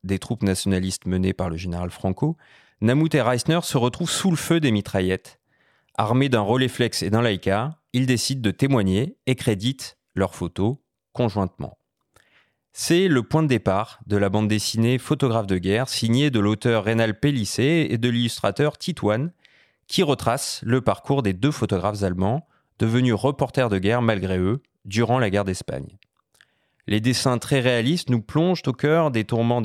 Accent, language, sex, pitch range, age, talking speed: French, French, male, 100-135 Hz, 30-49, 165 wpm